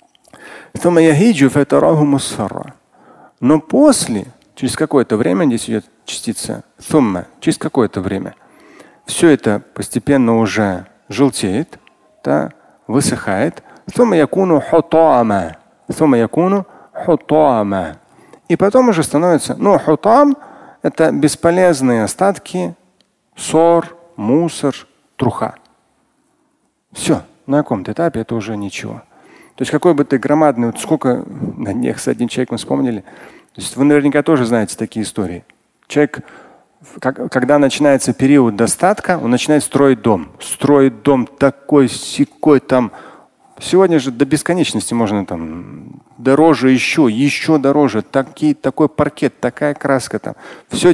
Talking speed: 115 wpm